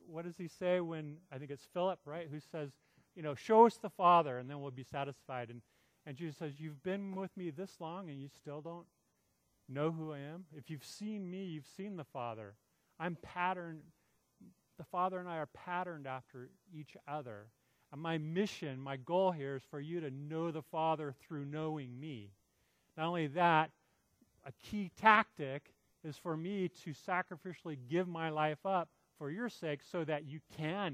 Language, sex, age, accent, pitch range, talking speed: English, male, 40-59, American, 140-175 Hz, 190 wpm